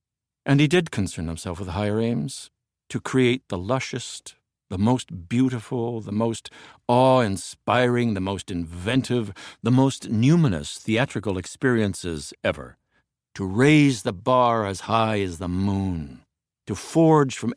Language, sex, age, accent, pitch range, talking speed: English, male, 60-79, American, 95-125 Hz, 135 wpm